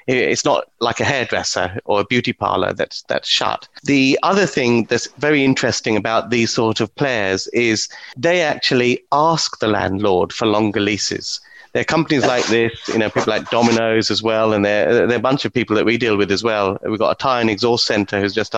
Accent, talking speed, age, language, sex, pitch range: British, 215 wpm, 30-49, English, male, 110-130 Hz